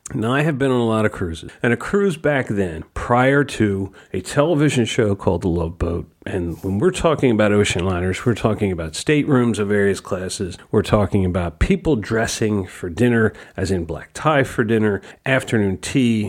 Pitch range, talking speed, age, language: 95-120 Hz, 190 wpm, 40-59, English